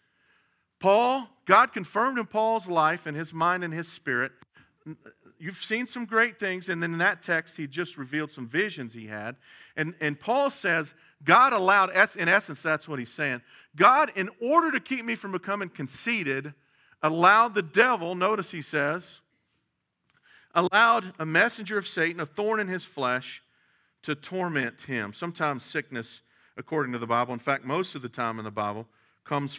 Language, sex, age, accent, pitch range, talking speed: English, male, 50-69, American, 140-190 Hz, 170 wpm